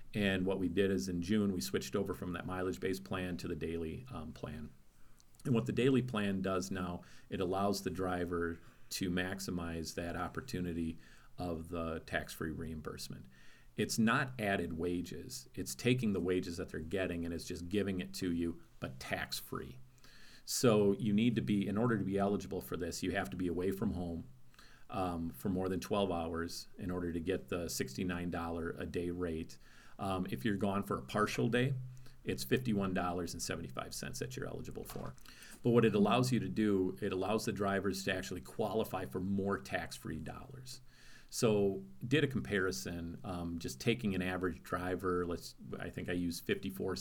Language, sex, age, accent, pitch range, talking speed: English, male, 40-59, American, 85-105 Hz, 185 wpm